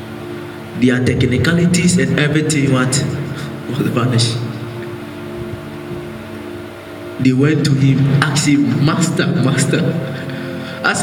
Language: English